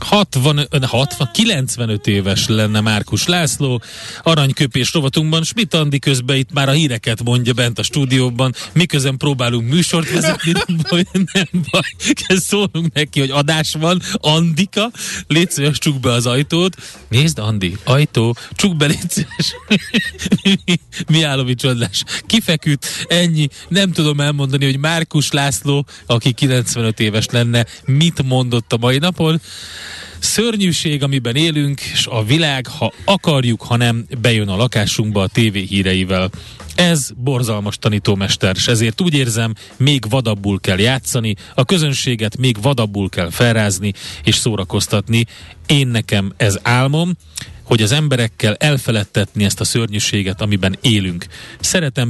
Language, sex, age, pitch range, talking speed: Hungarian, male, 30-49, 110-155 Hz, 130 wpm